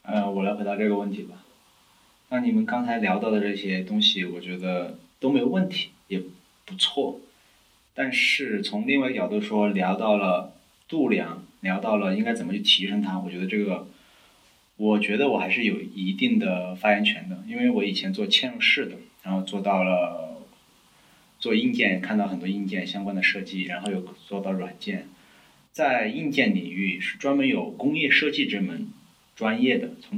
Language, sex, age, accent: Chinese, male, 20-39, native